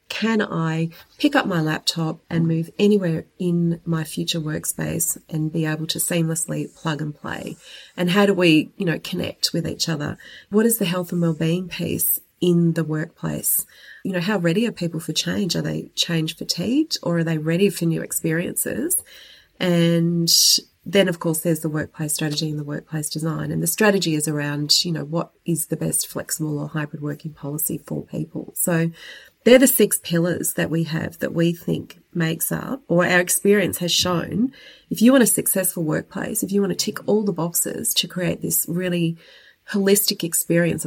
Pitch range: 160-185 Hz